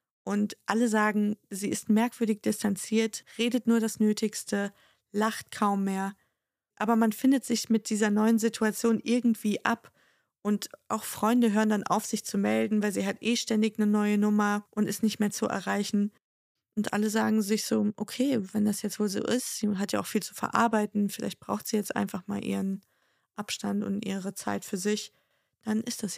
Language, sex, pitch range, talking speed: German, female, 205-225 Hz, 190 wpm